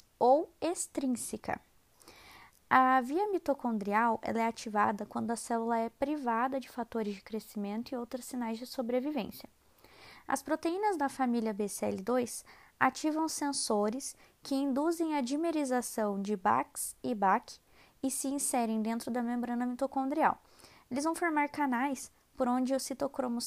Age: 20-39